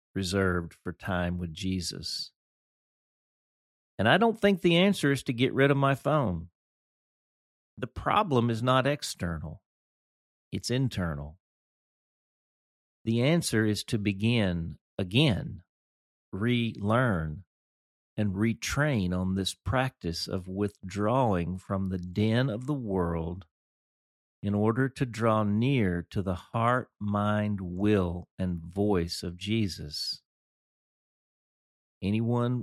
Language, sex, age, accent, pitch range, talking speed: English, male, 40-59, American, 90-120 Hz, 110 wpm